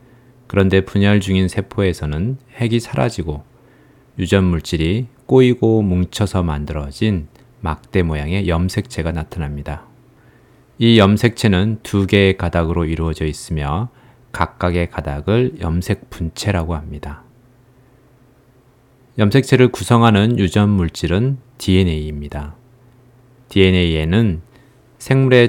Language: Korean